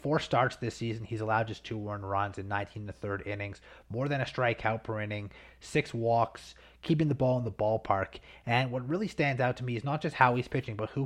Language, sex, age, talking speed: English, male, 30-49, 240 wpm